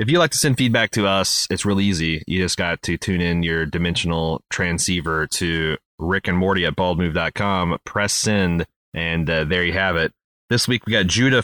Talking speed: 205 wpm